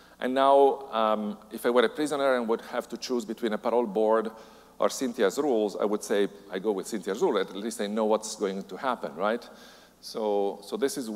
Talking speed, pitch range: 220 wpm, 105-140 Hz